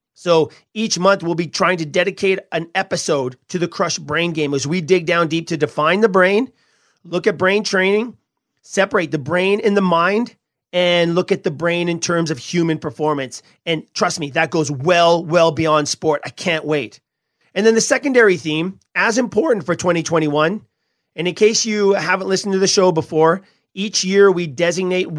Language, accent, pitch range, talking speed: English, American, 160-190 Hz, 190 wpm